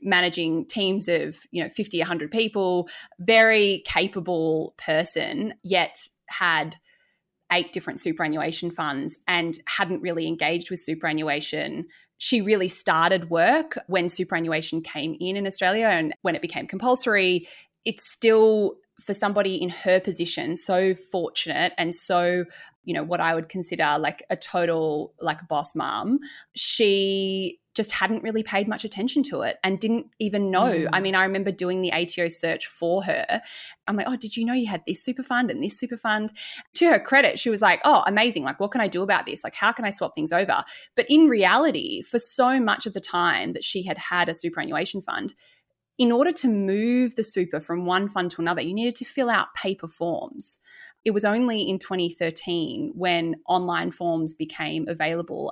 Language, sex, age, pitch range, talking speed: English, female, 20-39, 170-225 Hz, 180 wpm